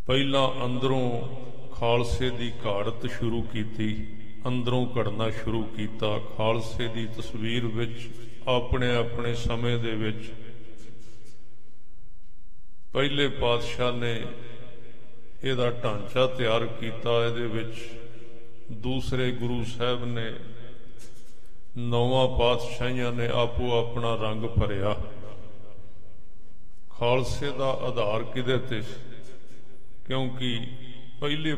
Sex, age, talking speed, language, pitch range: male, 50-69, 85 wpm, English, 115-125 Hz